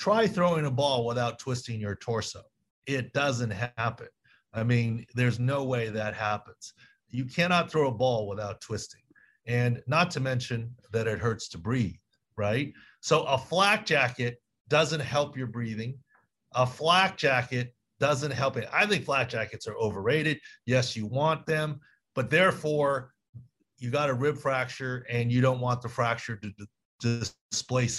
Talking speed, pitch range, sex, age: 160 wpm, 115-145 Hz, male, 40-59